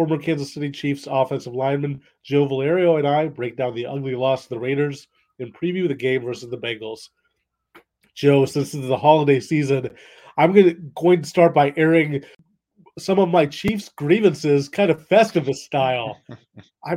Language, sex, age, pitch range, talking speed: English, male, 30-49, 145-185 Hz, 170 wpm